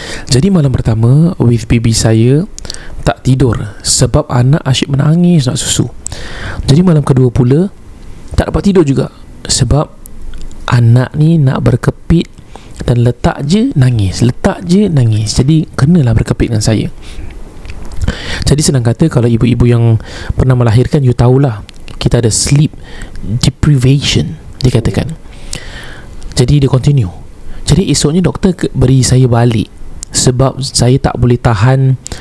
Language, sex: Malay, male